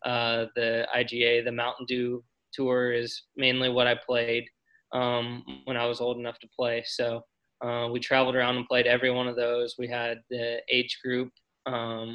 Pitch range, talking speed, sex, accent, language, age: 120-130 Hz, 185 wpm, male, American, English, 20-39